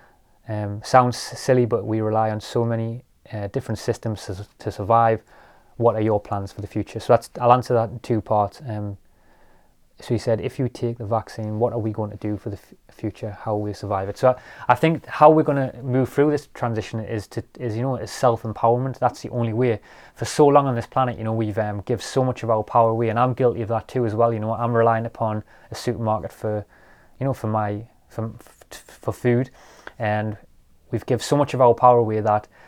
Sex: male